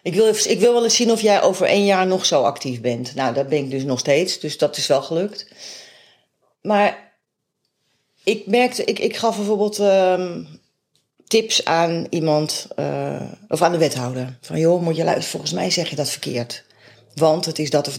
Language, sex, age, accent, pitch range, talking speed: Dutch, female, 40-59, Dutch, 140-205 Hz, 195 wpm